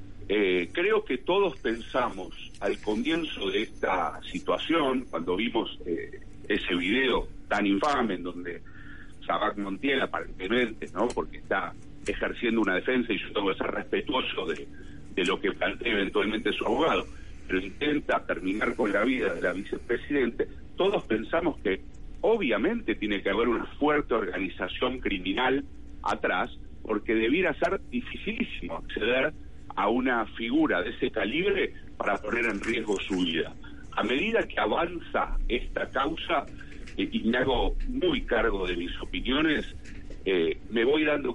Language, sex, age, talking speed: Spanish, male, 50-69, 145 wpm